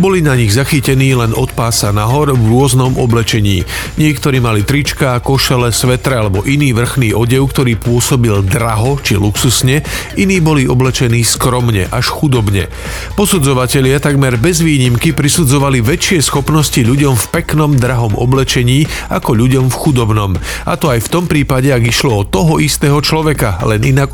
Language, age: Slovak, 40-59